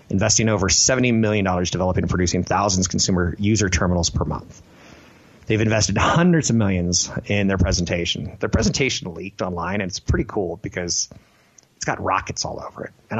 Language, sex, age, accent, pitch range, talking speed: English, male, 30-49, American, 90-110 Hz, 175 wpm